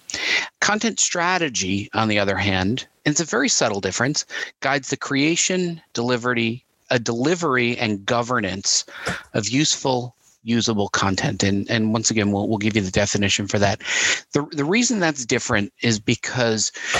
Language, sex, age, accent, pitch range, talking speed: English, male, 40-59, American, 110-145 Hz, 150 wpm